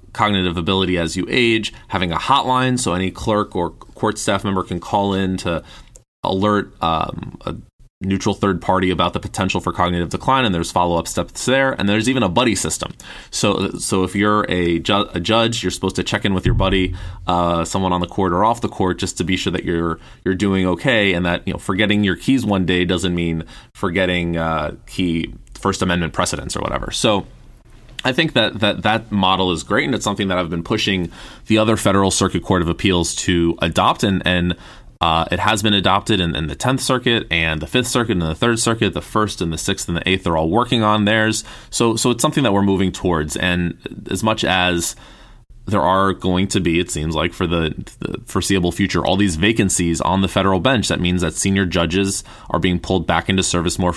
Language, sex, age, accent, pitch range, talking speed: English, male, 20-39, American, 85-105 Hz, 220 wpm